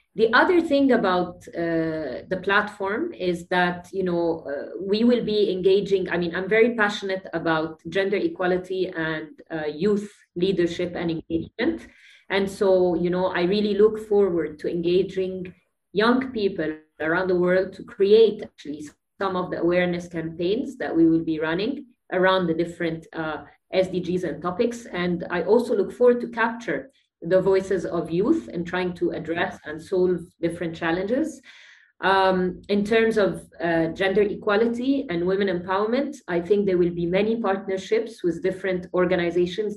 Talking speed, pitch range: 155 wpm, 170-195 Hz